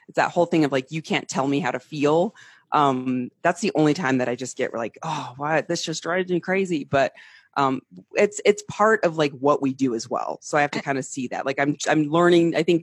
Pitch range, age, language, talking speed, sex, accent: 130-155 Hz, 30-49, English, 255 wpm, female, American